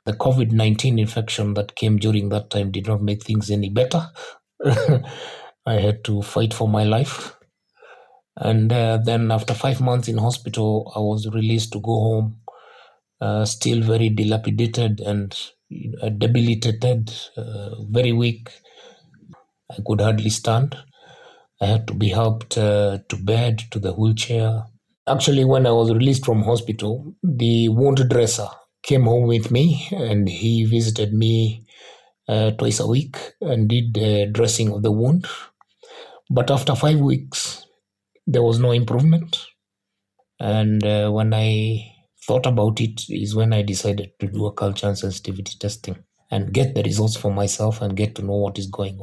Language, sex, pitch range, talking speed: English, male, 105-120 Hz, 160 wpm